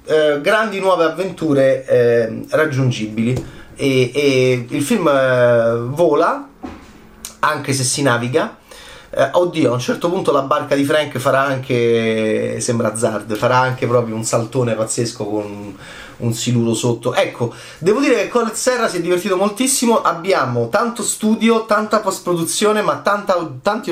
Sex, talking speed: male, 140 wpm